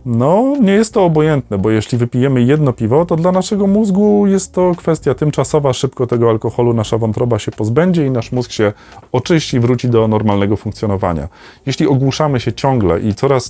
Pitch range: 120-175 Hz